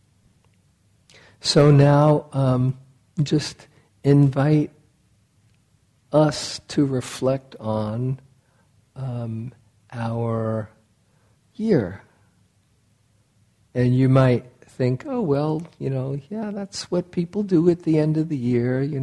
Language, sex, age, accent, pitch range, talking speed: English, male, 50-69, American, 115-145 Hz, 100 wpm